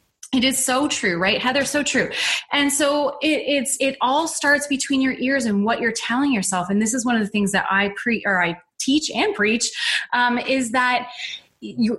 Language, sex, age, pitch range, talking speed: English, female, 20-39, 205-255 Hz, 210 wpm